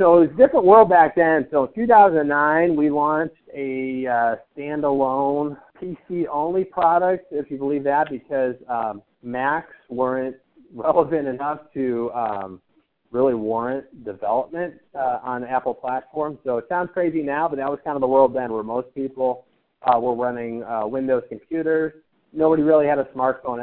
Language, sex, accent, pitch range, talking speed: English, male, American, 110-145 Hz, 165 wpm